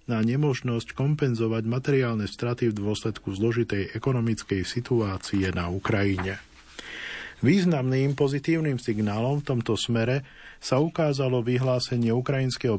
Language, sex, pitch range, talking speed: Slovak, male, 110-130 Hz, 105 wpm